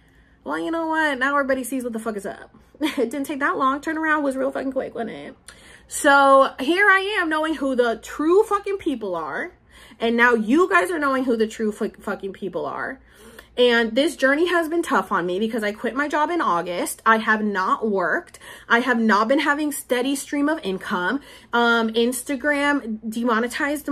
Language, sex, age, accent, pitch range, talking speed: English, female, 30-49, American, 220-285 Hz, 200 wpm